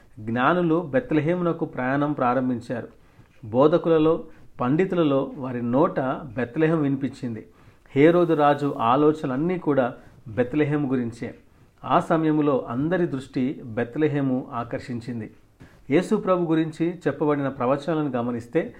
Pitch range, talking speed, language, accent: 130-160 Hz, 85 wpm, Telugu, native